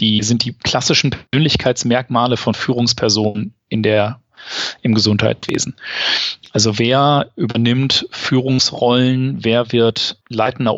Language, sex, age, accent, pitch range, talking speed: German, male, 40-59, German, 110-130 Hz, 100 wpm